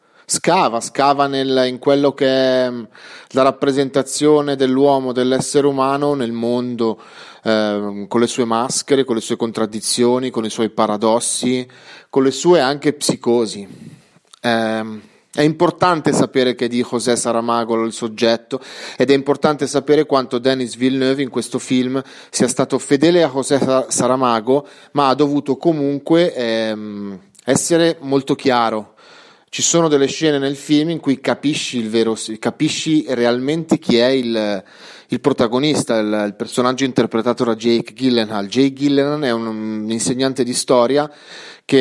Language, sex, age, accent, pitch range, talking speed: Italian, male, 30-49, native, 115-140 Hz, 145 wpm